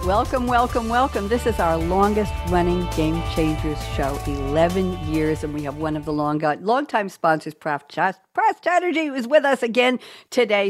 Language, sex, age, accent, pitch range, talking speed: English, female, 60-79, American, 155-220 Hz, 155 wpm